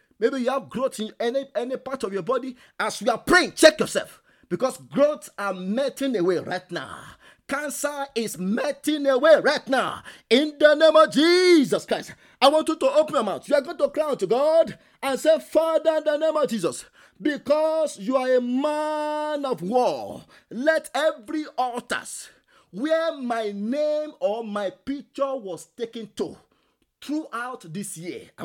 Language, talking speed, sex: English, 170 wpm, male